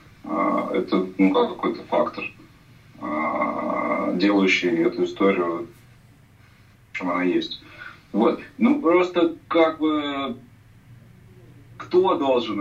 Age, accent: 20-39, native